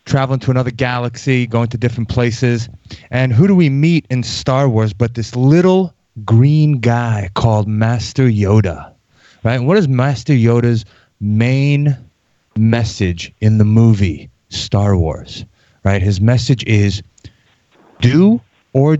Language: English